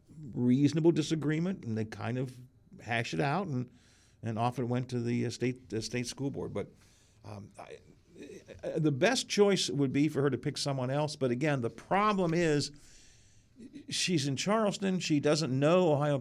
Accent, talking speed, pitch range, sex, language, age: American, 170 wpm, 105-140 Hz, male, English, 50-69